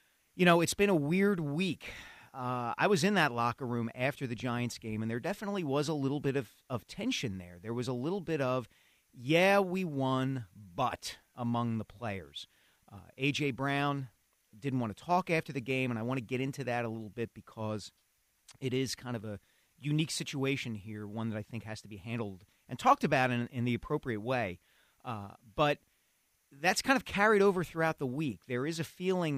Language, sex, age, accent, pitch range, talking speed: English, male, 40-59, American, 115-150 Hz, 205 wpm